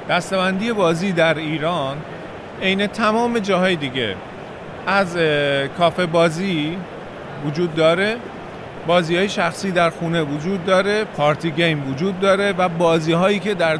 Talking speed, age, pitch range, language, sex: 115 wpm, 40-59, 155-190 Hz, English, male